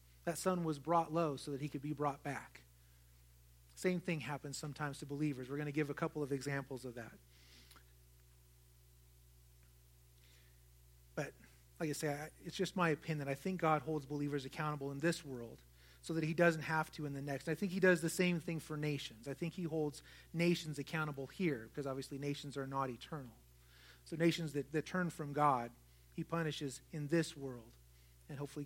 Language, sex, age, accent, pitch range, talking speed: English, male, 30-49, American, 130-165 Hz, 190 wpm